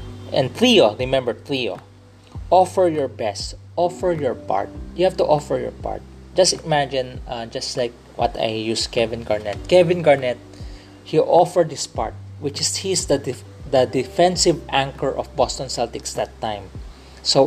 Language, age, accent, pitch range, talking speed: English, 20-39, Filipino, 100-140 Hz, 155 wpm